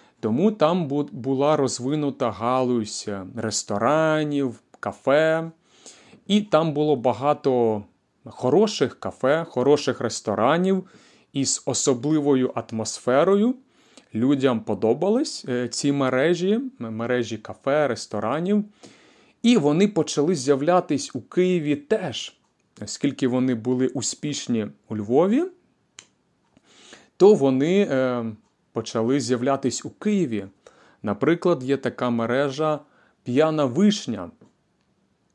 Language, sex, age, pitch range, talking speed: Ukrainian, male, 30-49, 120-175 Hz, 85 wpm